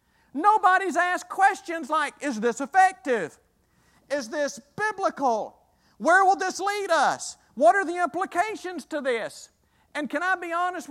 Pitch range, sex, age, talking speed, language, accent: 210-305 Hz, male, 50-69, 145 wpm, English, American